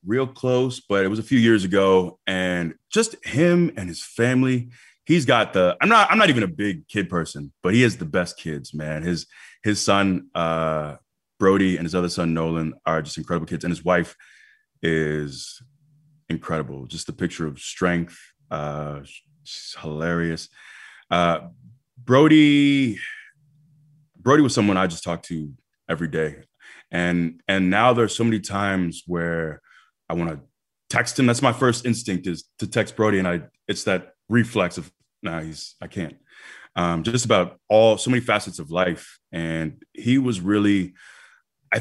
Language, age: English, 20-39